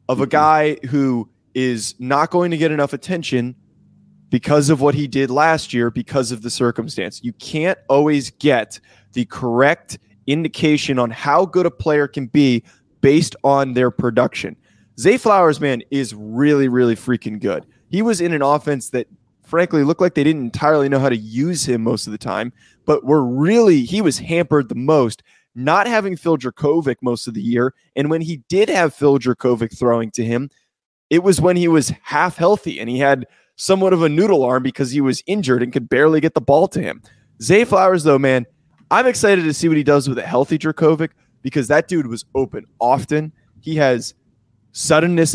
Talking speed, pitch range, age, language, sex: 195 wpm, 125-155 Hz, 20-39, English, male